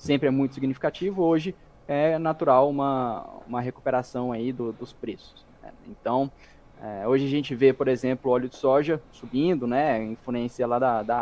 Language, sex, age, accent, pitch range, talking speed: Portuguese, male, 20-39, Brazilian, 120-140 Hz, 170 wpm